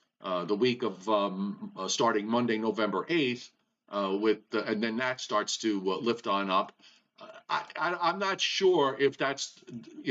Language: English